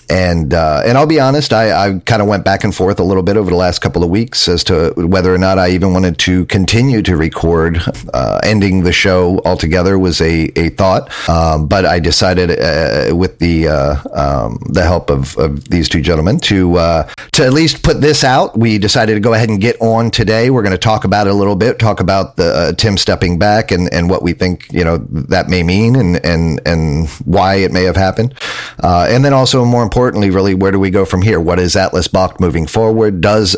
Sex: male